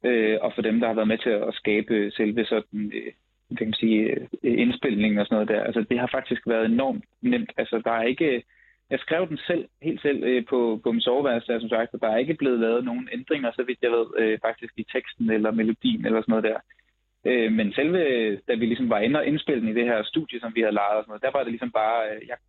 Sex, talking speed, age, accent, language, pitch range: male, 250 wpm, 20-39, native, Danish, 110-140 Hz